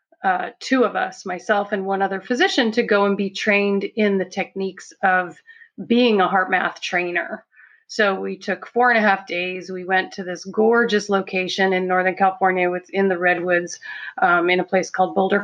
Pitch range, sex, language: 180-205 Hz, female, English